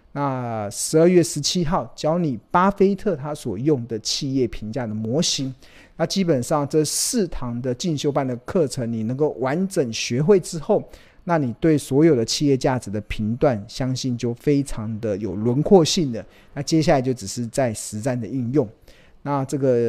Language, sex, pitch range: Chinese, male, 115-155 Hz